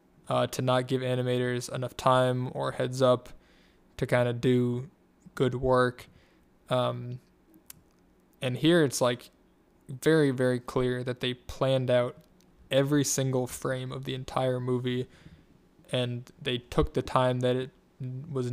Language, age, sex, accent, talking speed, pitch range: English, 10-29, male, American, 140 wpm, 125-135 Hz